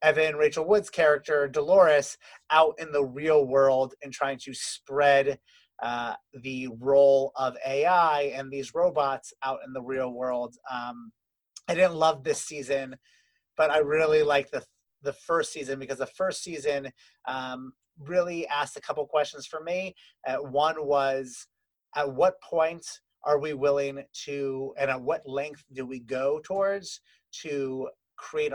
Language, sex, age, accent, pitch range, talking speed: English, male, 30-49, American, 135-160 Hz, 155 wpm